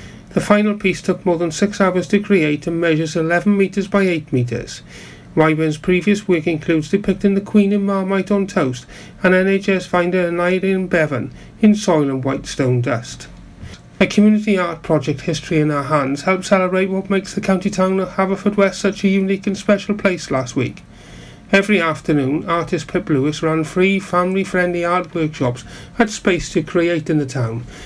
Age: 40-59